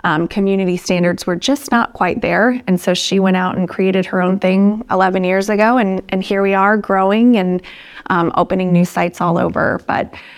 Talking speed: 200 wpm